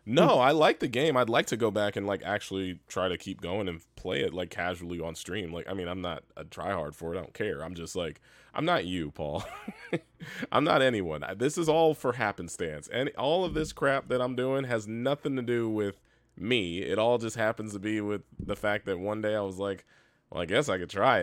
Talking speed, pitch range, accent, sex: 250 wpm, 90-115 Hz, American, male